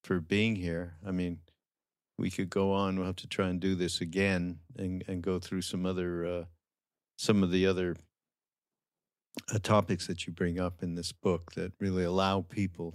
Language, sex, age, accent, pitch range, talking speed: English, male, 50-69, American, 90-100 Hz, 190 wpm